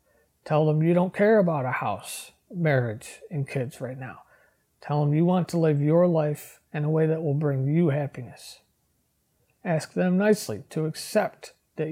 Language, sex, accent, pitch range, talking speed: English, male, American, 150-180 Hz, 175 wpm